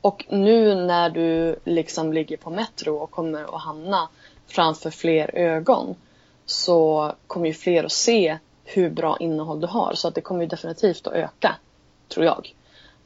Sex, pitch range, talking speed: female, 170-230 Hz, 165 wpm